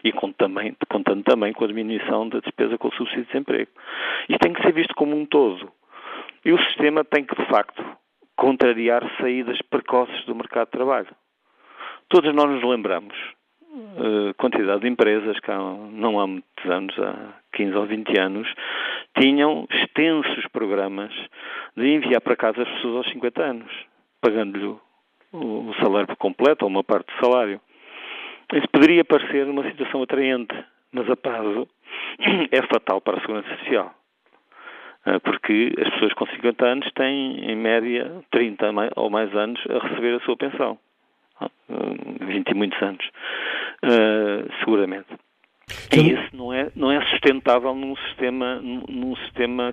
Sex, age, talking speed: male, 50-69, 150 wpm